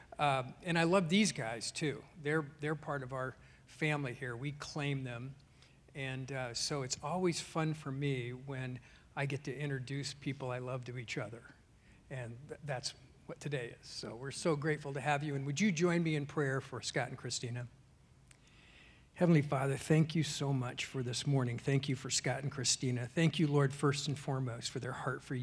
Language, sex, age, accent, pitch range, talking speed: English, male, 50-69, American, 130-145 Hz, 200 wpm